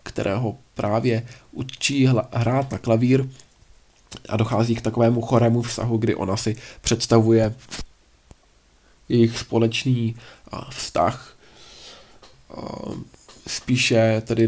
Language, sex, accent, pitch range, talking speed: Czech, male, native, 110-125 Hz, 90 wpm